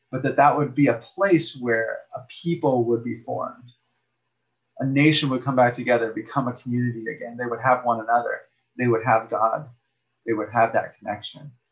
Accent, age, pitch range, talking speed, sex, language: American, 30-49, 120-145 Hz, 190 wpm, male, English